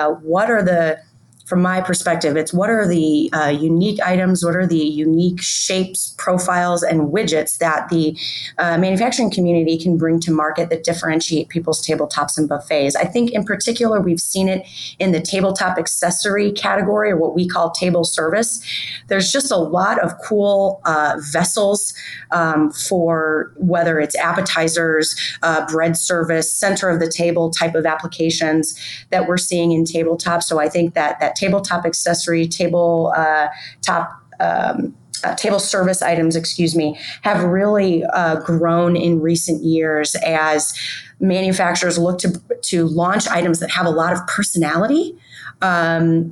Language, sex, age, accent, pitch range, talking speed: English, female, 30-49, American, 160-185 Hz, 155 wpm